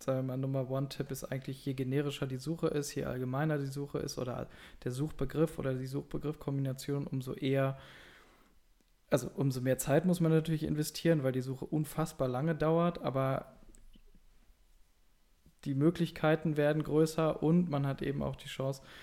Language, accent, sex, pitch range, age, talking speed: German, German, male, 135-160 Hz, 20-39, 155 wpm